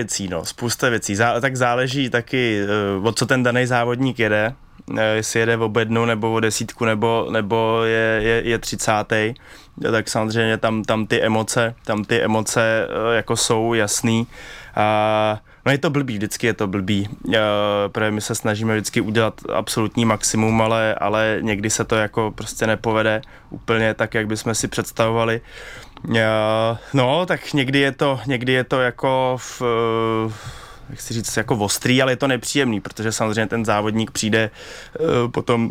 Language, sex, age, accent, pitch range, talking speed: Czech, male, 20-39, native, 110-120 Hz, 165 wpm